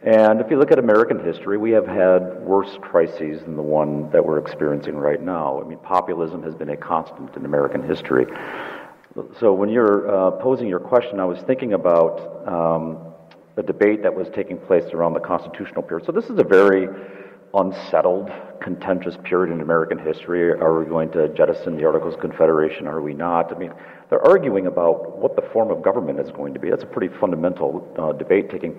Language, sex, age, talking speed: English, male, 50-69, 200 wpm